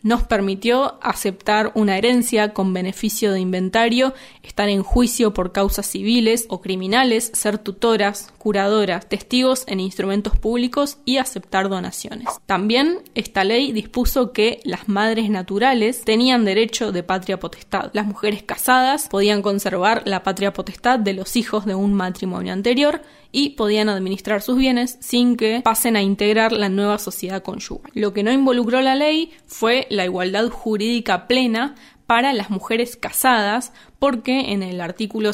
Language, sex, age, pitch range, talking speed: Spanish, female, 20-39, 200-245 Hz, 150 wpm